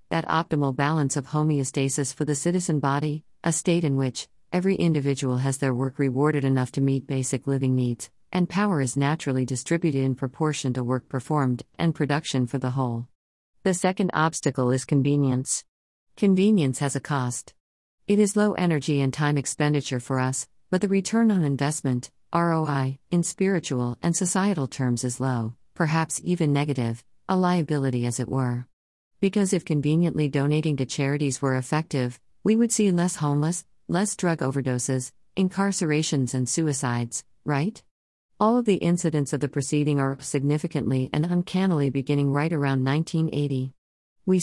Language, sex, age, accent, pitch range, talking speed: English, female, 50-69, American, 130-165 Hz, 155 wpm